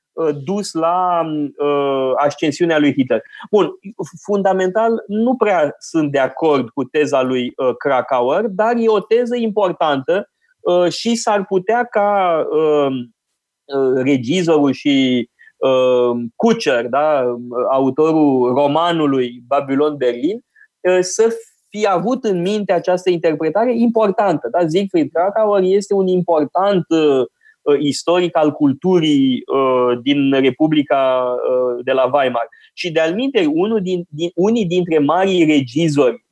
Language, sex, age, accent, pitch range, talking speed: Romanian, male, 20-39, native, 140-200 Hz, 105 wpm